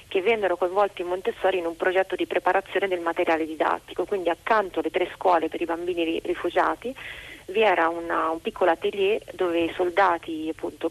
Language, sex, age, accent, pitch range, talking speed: Italian, female, 30-49, native, 160-190 Hz, 175 wpm